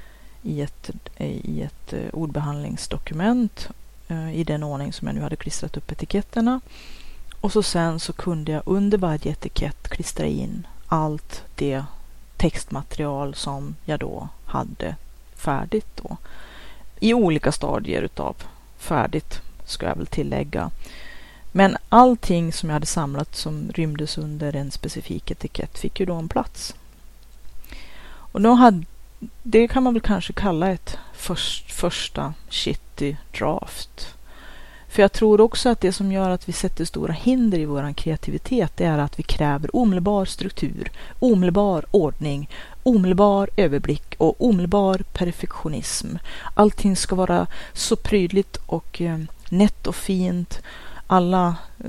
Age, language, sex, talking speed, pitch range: 30-49, Swedish, female, 130 wpm, 150-200 Hz